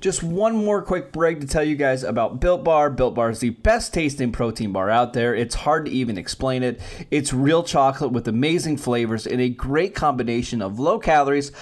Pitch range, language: 125-160 Hz, English